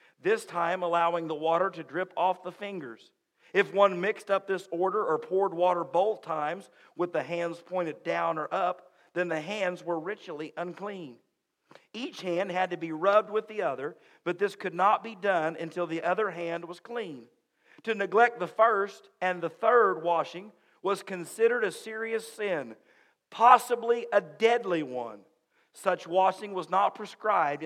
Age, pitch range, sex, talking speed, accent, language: 50-69, 150-195 Hz, male, 165 wpm, American, English